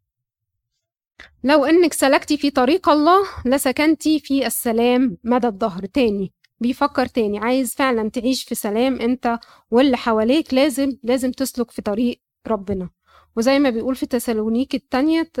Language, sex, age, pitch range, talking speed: Arabic, female, 20-39, 225-280 Hz, 130 wpm